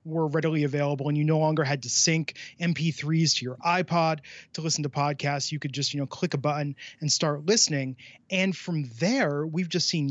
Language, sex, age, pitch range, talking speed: English, male, 30-49, 140-170 Hz, 210 wpm